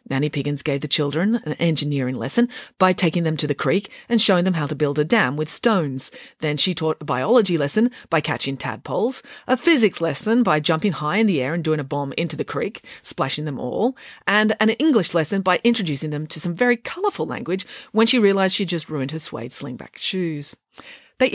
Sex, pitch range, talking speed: female, 150-215 Hz, 210 wpm